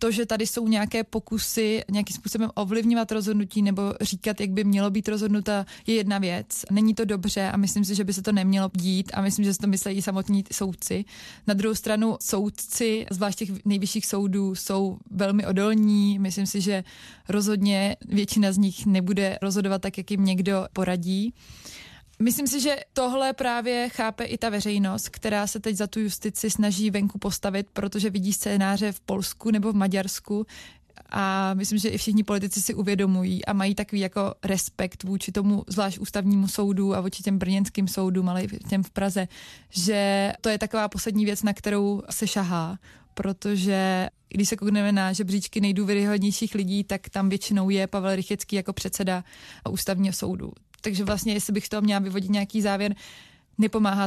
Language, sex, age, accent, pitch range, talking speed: Czech, female, 20-39, native, 195-215 Hz, 175 wpm